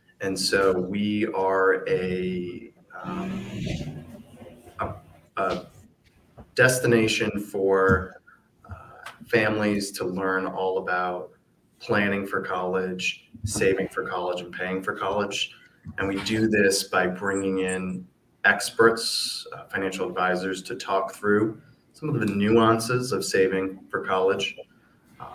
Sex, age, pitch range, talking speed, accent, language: male, 30-49, 90-105 Hz, 115 wpm, American, English